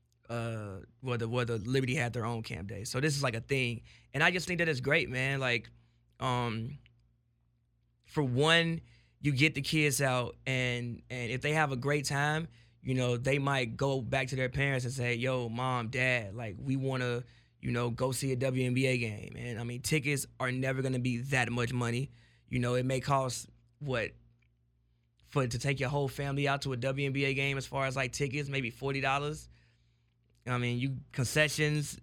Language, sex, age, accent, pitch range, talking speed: English, male, 20-39, American, 120-140 Hz, 195 wpm